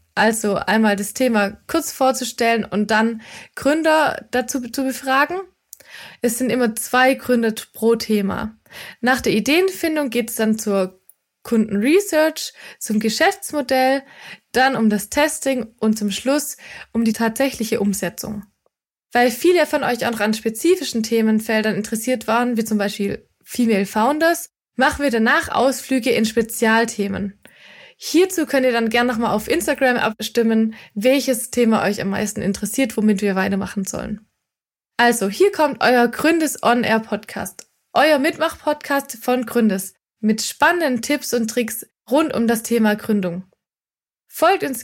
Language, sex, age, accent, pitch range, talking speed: German, female, 20-39, German, 220-270 Hz, 140 wpm